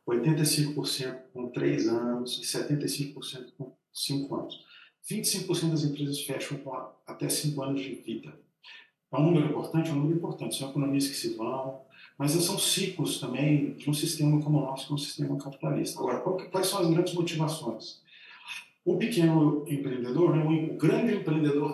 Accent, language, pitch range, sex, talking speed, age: Brazilian, Portuguese, 135-160 Hz, male, 155 wpm, 40-59